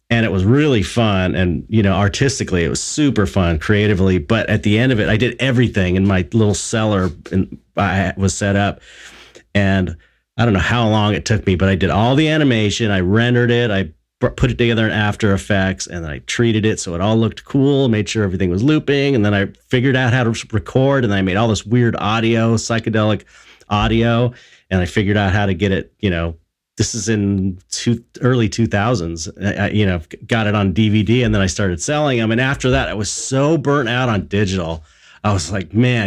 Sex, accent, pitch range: male, American, 95-120 Hz